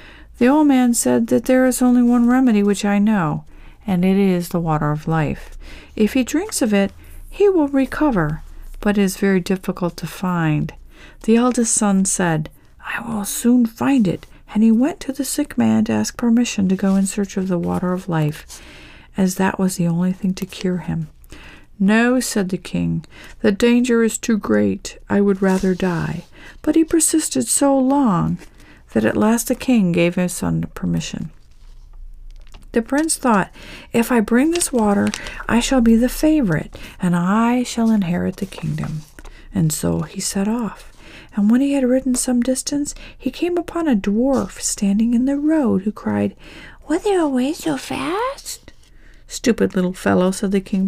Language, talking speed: English, 180 wpm